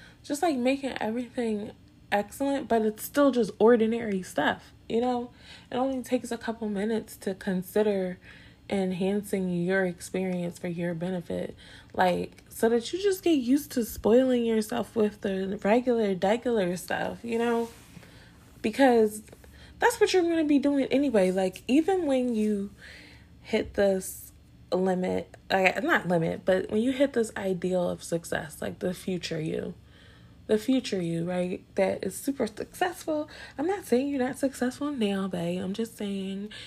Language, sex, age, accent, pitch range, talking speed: English, female, 20-39, American, 185-240 Hz, 155 wpm